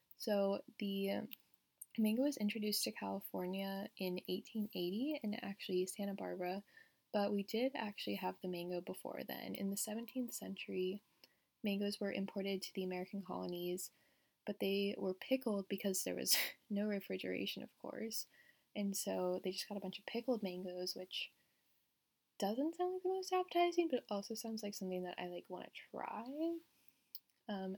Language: English